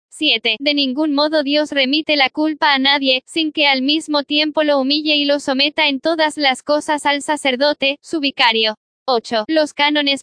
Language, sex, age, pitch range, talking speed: Spanish, female, 10-29, 275-305 Hz, 180 wpm